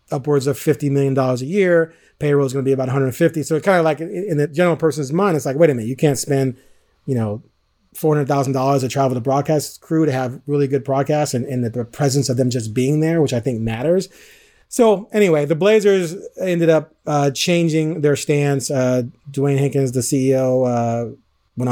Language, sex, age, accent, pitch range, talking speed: English, male, 30-49, American, 130-160 Hz, 205 wpm